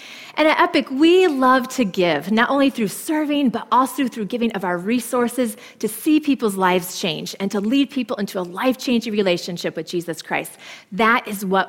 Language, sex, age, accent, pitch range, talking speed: English, female, 30-49, American, 200-265 Hz, 190 wpm